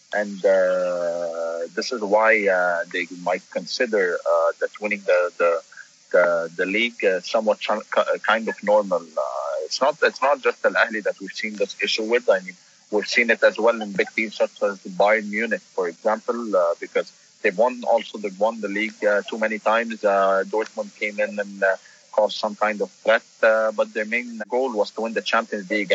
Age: 30-49